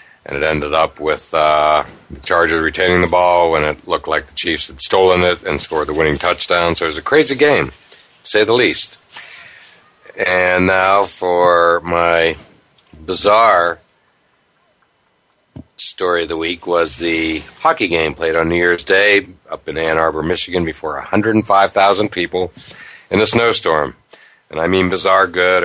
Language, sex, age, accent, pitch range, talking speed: English, male, 60-79, American, 80-95 Hz, 160 wpm